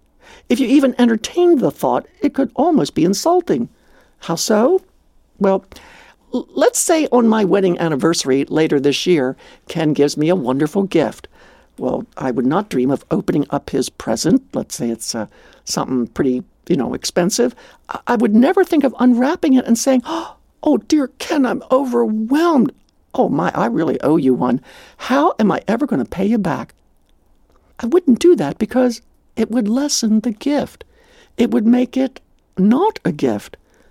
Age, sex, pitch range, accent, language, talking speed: 60-79, male, 190-305 Hz, American, English, 170 wpm